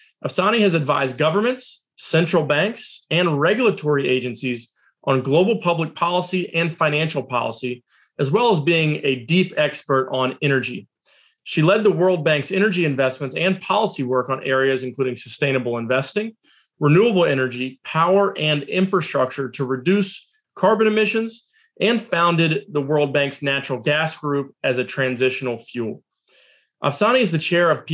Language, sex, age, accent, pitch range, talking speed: English, male, 30-49, American, 135-180 Hz, 140 wpm